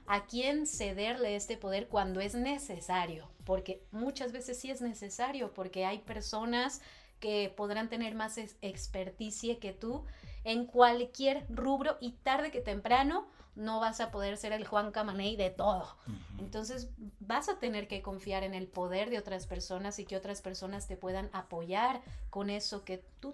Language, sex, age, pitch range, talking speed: Spanish, female, 30-49, 190-235 Hz, 165 wpm